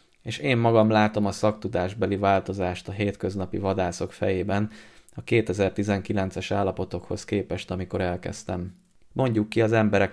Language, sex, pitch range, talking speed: Hungarian, male, 95-110 Hz, 125 wpm